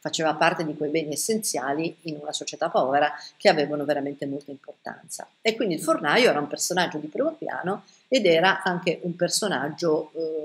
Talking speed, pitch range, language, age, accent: 180 wpm, 150-195 Hz, Italian, 50-69, native